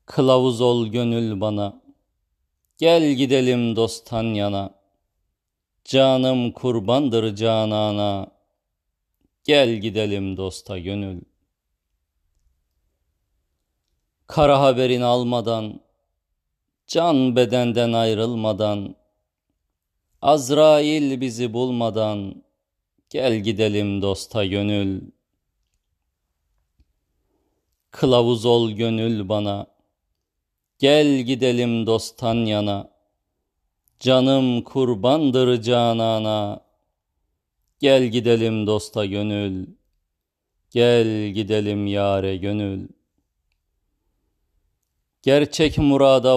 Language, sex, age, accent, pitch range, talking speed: Turkish, male, 40-59, native, 95-125 Hz, 65 wpm